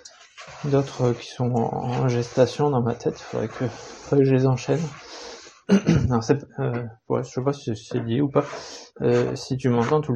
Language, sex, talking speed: French, male, 190 wpm